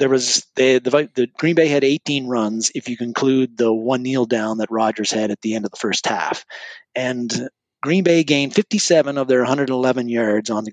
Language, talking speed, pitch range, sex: English, 215 wpm, 115-145 Hz, male